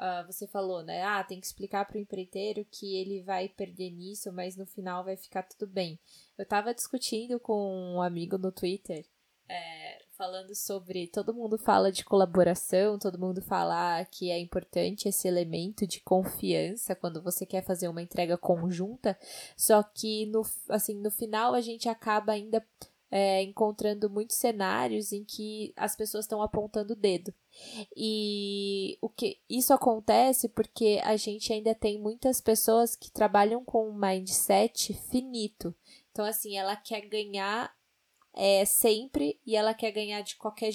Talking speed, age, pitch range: 160 wpm, 10-29, 190-220 Hz